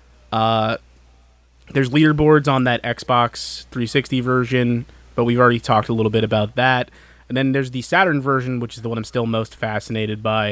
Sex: male